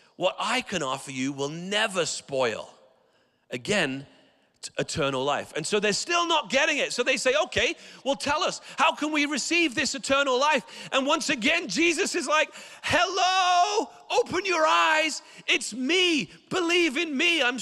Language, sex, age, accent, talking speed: English, male, 40-59, British, 165 wpm